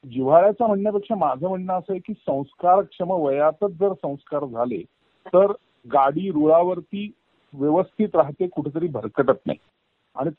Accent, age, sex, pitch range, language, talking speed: native, 50-69, male, 145-185 Hz, Marathi, 120 wpm